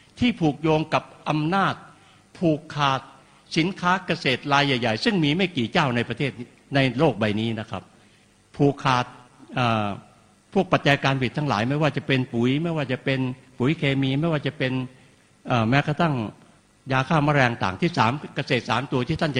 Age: 60-79